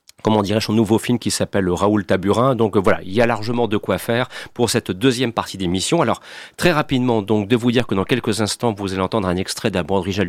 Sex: male